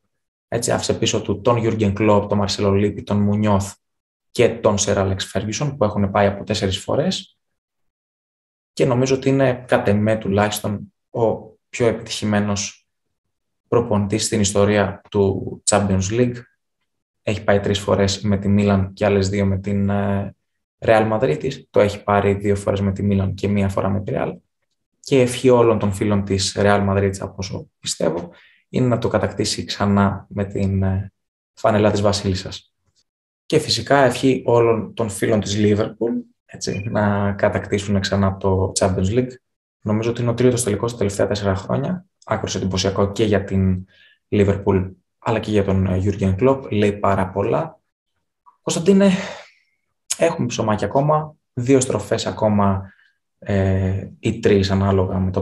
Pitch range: 100-115 Hz